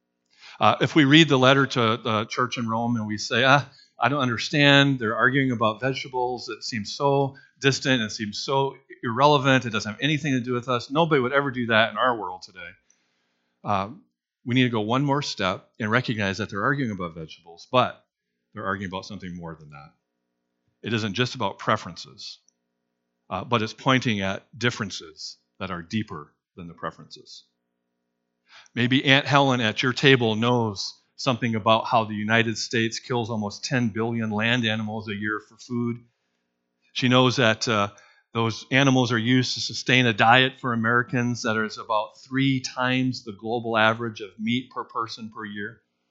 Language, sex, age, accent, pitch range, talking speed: English, male, 40-59, American, 100-130 Hz, 180 wpm